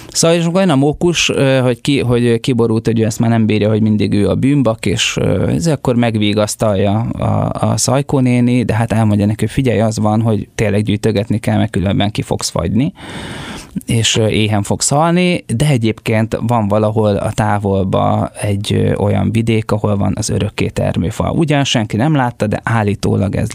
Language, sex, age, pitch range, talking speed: Hungarian, male, 20-39, 105-125 Hz, 175 wpm